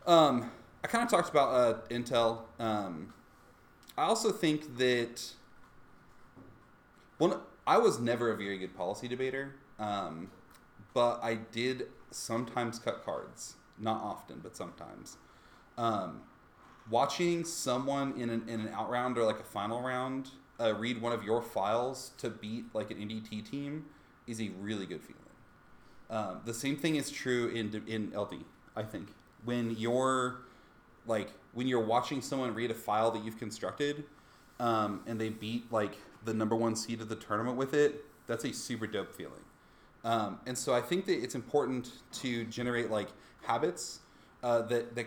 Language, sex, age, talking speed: English, male, 30-49, 160 wpm